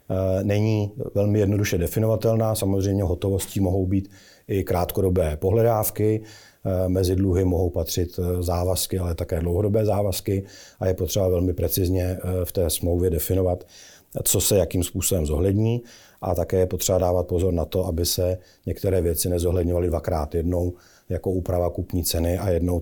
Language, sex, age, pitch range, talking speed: Czech, male, 40-59, 90-100 Hz, 145 wpm